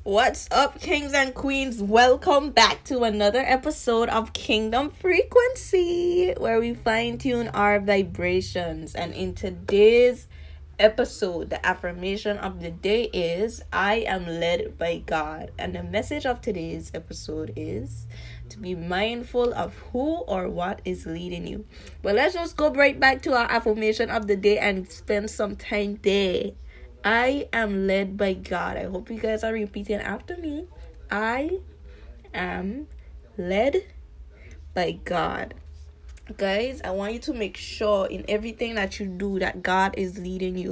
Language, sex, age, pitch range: English, female, 10-29, 185-235 Hz